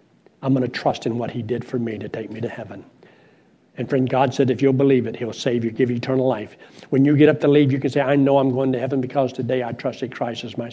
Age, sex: 60-79, male